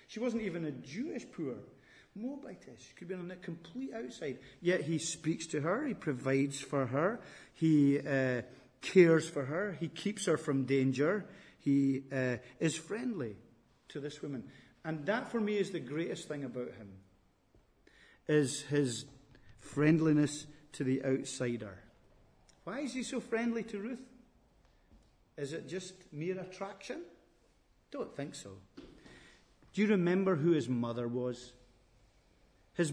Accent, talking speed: British, 145 wpm